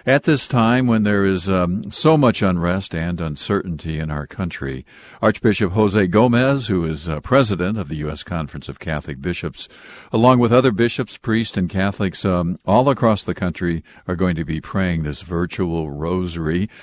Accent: American